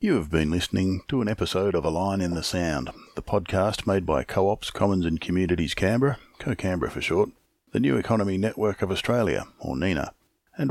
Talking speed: 190 wpm